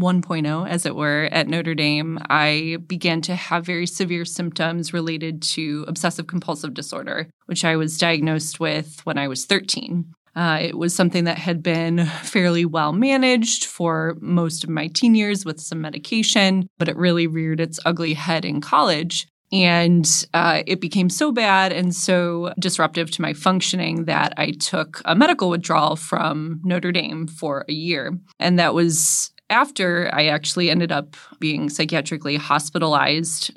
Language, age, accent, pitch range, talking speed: English, 20-39, American, 160-180 Hz, 160 wpm